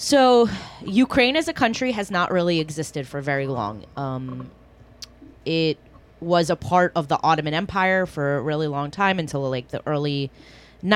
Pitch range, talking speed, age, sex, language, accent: 145-185 Hz, 165 wpm, 20-39, female, English, American